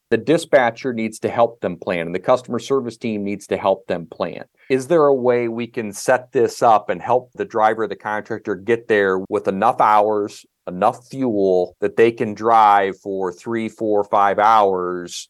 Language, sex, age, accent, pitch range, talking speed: English, male, 40-59, American, 95-120 Hz, 190 wpm